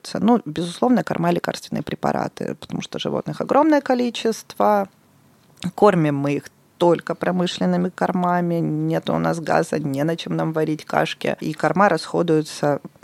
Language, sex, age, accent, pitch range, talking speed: Russian, female, 20-39, native, 160-215 Hz, 140 wpm